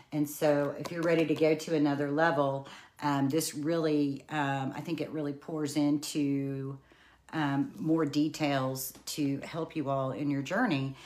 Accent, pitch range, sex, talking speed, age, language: American, 135-160 Hz, female, 165 wpm, 40-59, English